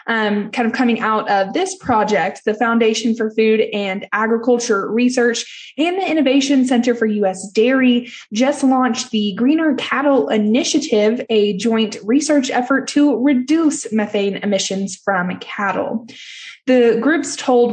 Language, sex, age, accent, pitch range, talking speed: English, female, 20-39, American, 210-260 Hz, 140 wpm